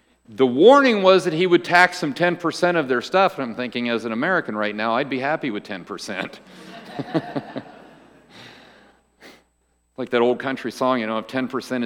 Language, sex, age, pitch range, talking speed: English, male, 50-69, 105-170 Hz, 170 wpm